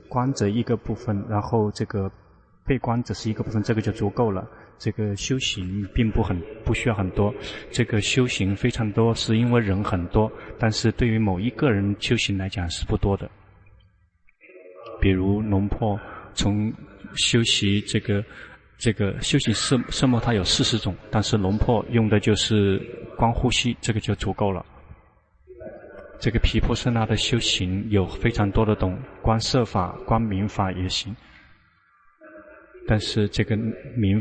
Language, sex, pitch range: Chinese, male, 100-115 Hz